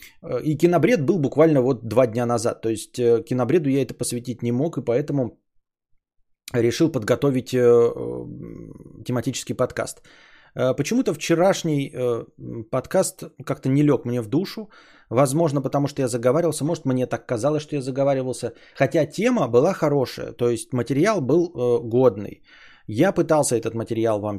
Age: 20-39